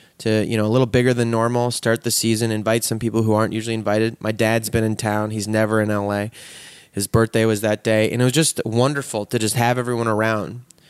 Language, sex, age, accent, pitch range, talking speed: English, male, 20-39, American, 110-145 Hz, 230 wpm